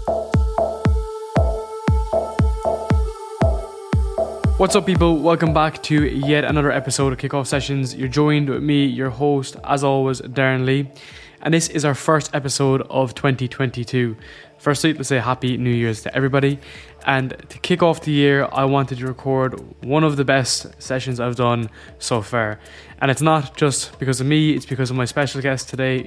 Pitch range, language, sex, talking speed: 130-150 Hz, English, male, 165 wpm